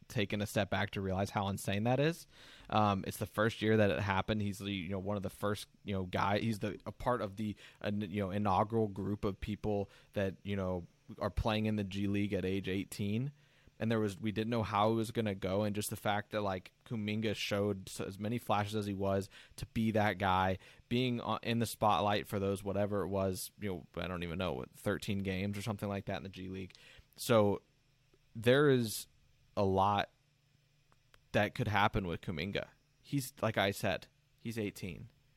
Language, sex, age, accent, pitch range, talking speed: English, male, 20-39, American, 100-115 Hz, 210 wpm